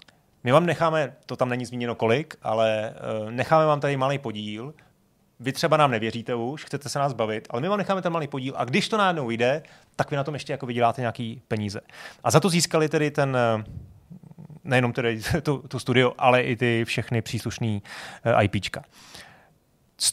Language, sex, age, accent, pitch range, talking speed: Czech, male, 30-49, native, 115-140 Hz, 180 wpm